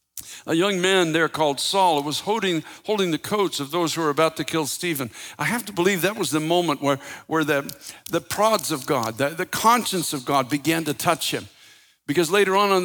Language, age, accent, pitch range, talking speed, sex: English, 60-79, American, 145-185 Hz, 220 wpm, male